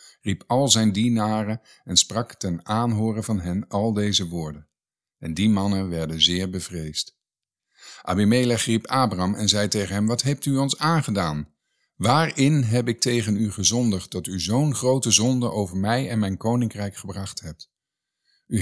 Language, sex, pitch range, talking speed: Dutch, male, 95-120 Hz, 160 wpm